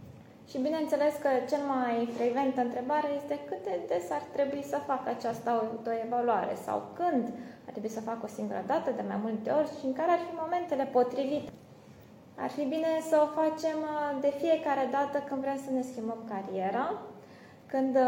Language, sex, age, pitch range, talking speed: Romanian, female, 20-39, 240-290 Hz, 175 wpm